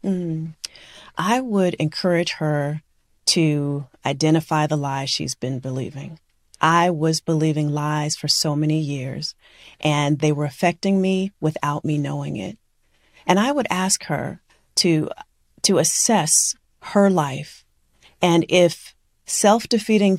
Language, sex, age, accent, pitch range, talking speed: English, female, 40-59, American, 150-180 Hz, 130 wpm